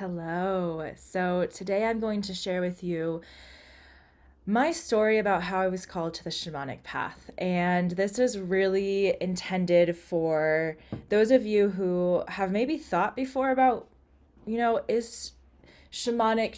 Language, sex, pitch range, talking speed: English, female, 160-205 Hz, 140 wpm